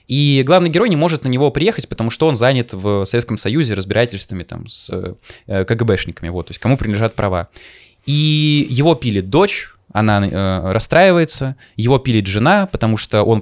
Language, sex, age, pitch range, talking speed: Russian, male, 20-39, 105-150 Hz, 170 wpm